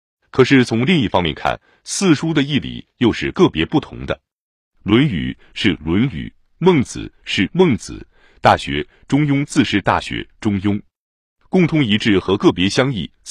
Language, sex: Chinese, male